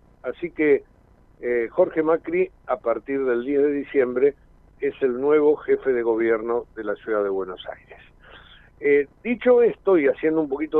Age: 50-69